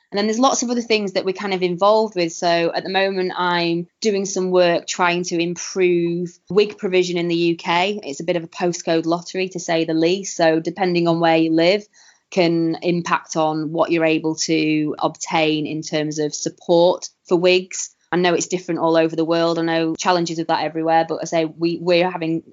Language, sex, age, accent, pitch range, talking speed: English, female, 20-39, British, 165-185 Hz, 215 wpm